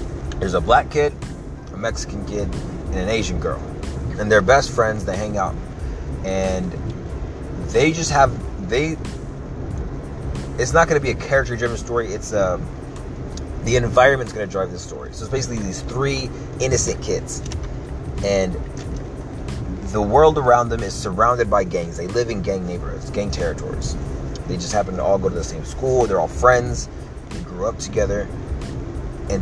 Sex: male